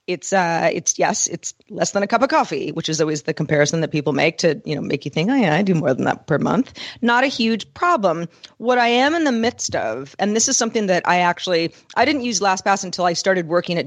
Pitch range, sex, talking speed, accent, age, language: 175-215 Hz, female, 265 wpm, American, 40-59, English